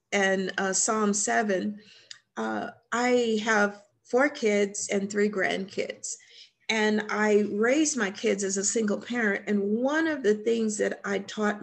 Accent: American